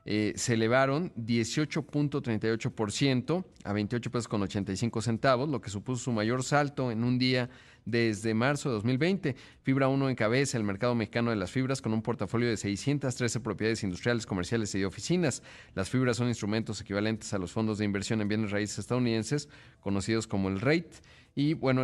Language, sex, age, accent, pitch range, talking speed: Spanish, male, 40-59, Mexican, 105-125 Hz, 170 wpm